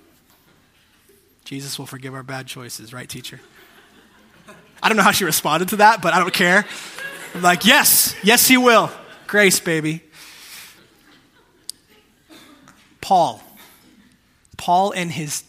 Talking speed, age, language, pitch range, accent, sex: 125 wpm, 20-39, English, 150-190 Hz, American, male